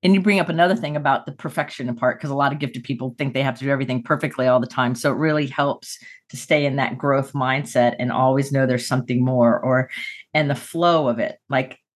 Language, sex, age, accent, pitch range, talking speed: English, female, 40-59, American, 125-155 Hz, 245 wpm